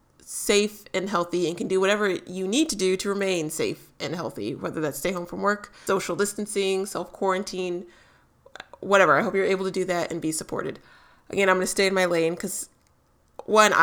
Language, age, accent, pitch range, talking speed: English, 30-49, American, 180-240 Hz, 195 wpm